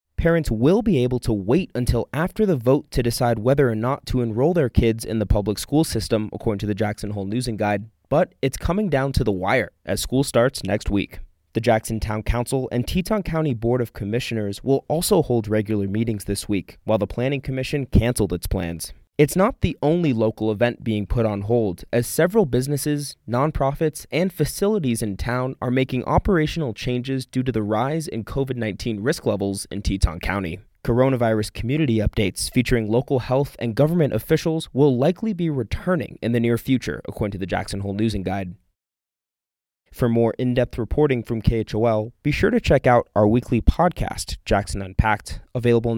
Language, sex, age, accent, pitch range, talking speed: English, male, 20-39, American, 105-135 Hz, 185 wpm